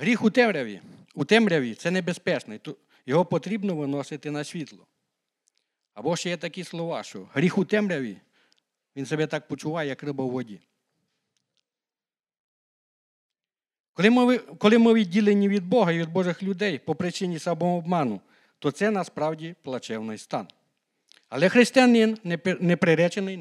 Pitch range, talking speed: 145-195 Hz, 135 wpm